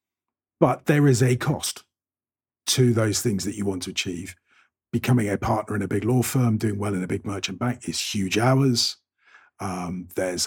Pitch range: 95-115 Hz